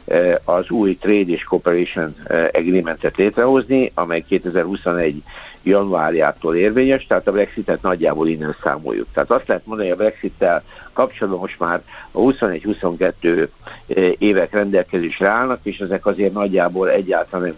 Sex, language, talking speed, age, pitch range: male, Hungarian, 125 wpm, 60-79, 90-115 Hz